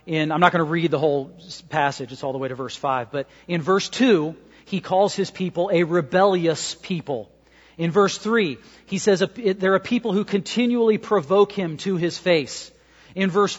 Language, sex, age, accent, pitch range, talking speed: English, male, 40-59, American, 135-190 Hz, 195 wpm